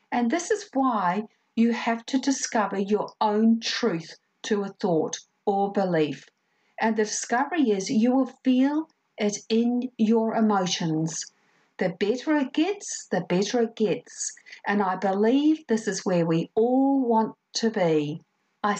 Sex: female